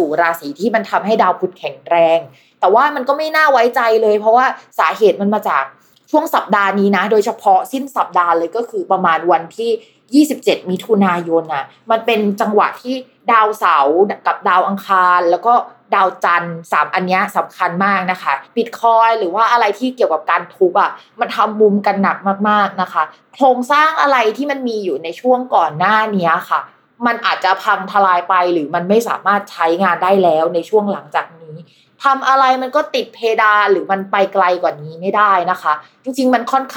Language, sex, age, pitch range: Thai, female, 20-39, 180-245 Hz